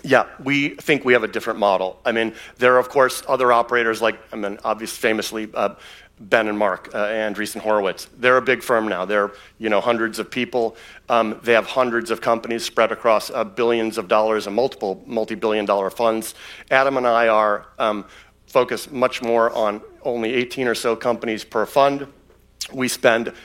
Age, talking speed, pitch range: 40-59, 190 wpm, 105-125 Hz